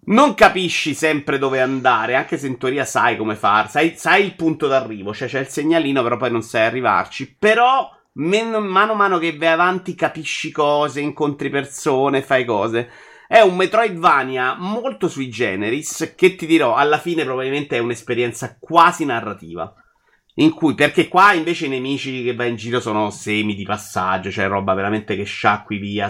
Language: Italian